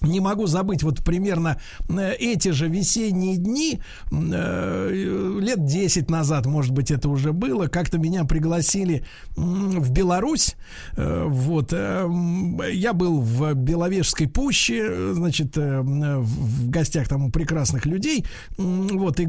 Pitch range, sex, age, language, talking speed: 150-185 Hz, male, 50-69, Russian, 110 wpm